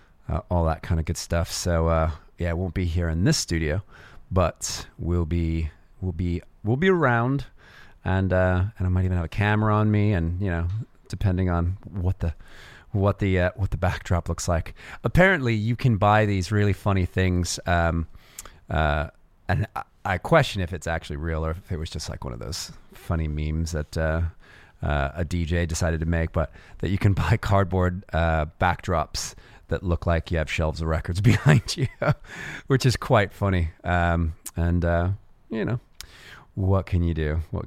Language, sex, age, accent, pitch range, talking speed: English, male, 30-49, American, 85-110 Hz, 190 wpm